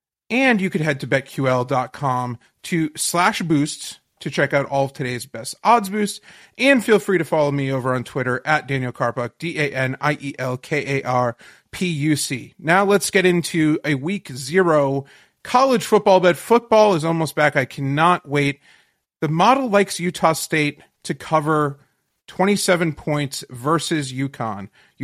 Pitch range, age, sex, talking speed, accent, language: 140-180 Hz, 40-59, male, 140 wpm, American, English